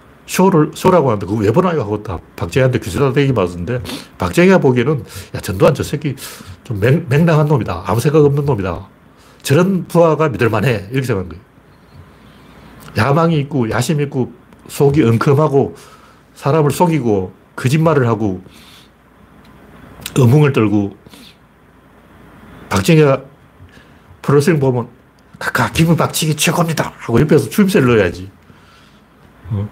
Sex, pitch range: male, 105-150 Hz